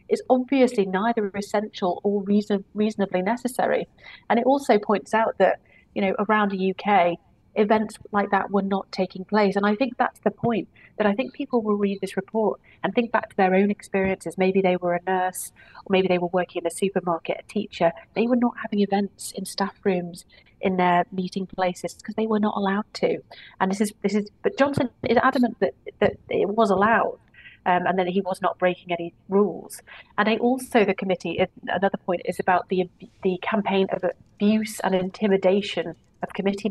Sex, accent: female, British